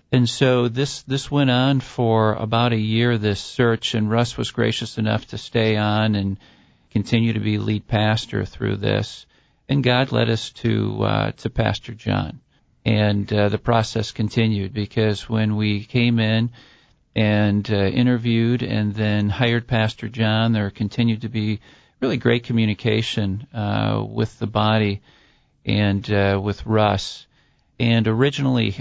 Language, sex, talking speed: English, male, 150 wpm